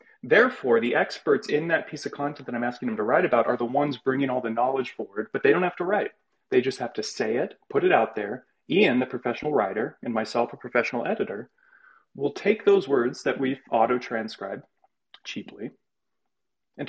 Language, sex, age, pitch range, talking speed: English, male, 30-49, 120-155 Hz, 205 wpm